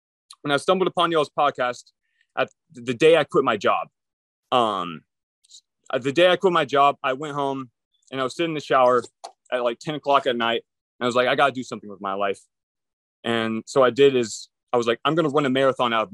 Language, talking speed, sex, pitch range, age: English, 240 wpm, male, 105-140 Hz, 20-39